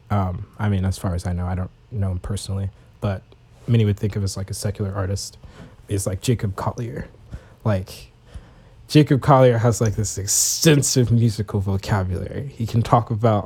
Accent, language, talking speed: American, English, 185 wpm